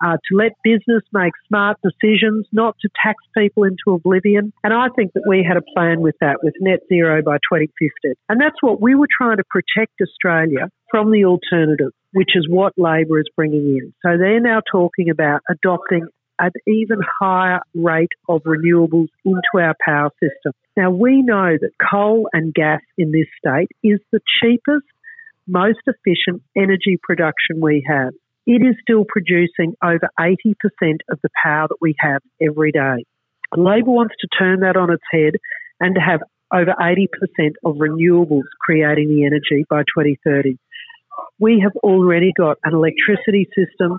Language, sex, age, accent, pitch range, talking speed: English, female, 50-69, Australian, 160-205 Hz, 170 wpm